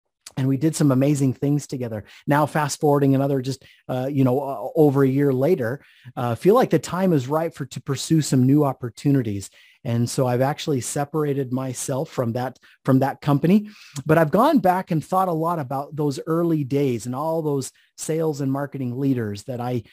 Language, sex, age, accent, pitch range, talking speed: English, male, 30-49, American, 130-155 Hz, 195 wpm